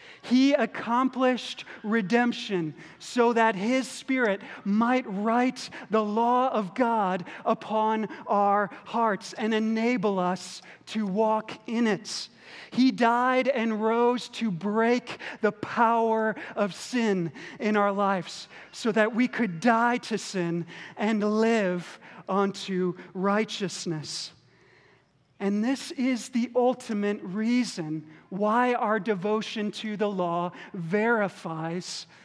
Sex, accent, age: male, American, 40-59